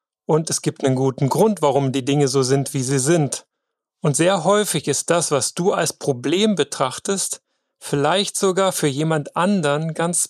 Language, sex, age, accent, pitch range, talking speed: German, male, 30-49, German, 145-175 Hz, 175 wpm